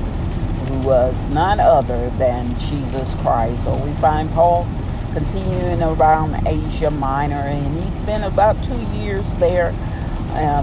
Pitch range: 110-155 Hz